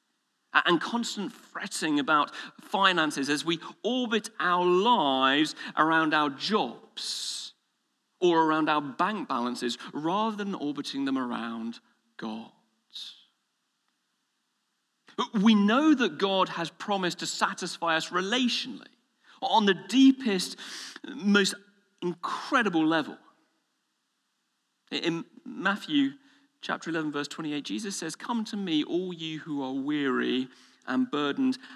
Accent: British